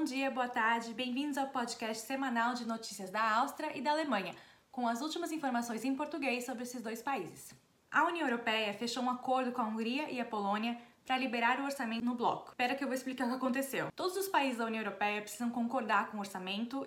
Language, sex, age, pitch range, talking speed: Portuguese, female, 20-39, 225-275 Hz, 220 wpm